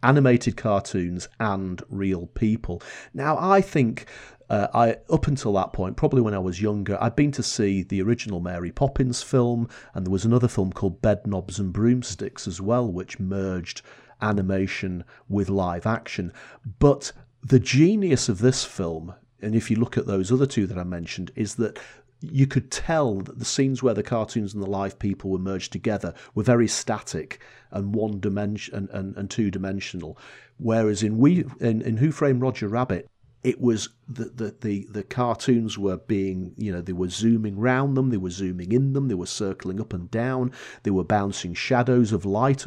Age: 40-59